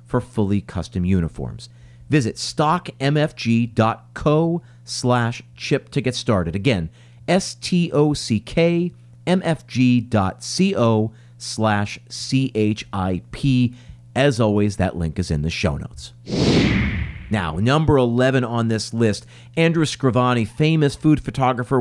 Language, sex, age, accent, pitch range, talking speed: English, male, 40-59, American, 105-140 Hz, 100 wpm